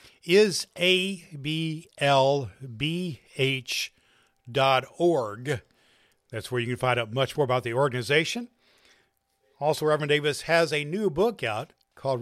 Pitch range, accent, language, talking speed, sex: 125-160 Hz, American, English, 135 wpm, male